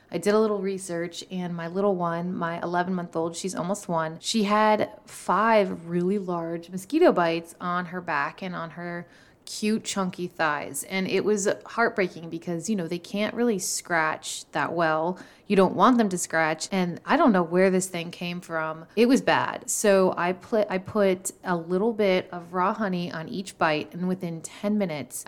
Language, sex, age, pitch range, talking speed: English, female, 20-39, 170-195 Hz, 190 wpm